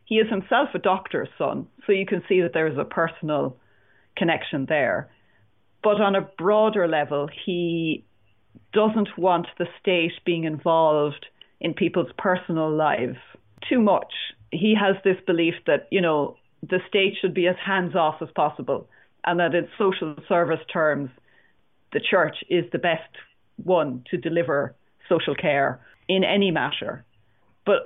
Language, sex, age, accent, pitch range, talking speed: English, female, 30-49, Irish, 150-185 Hz, 155 wpm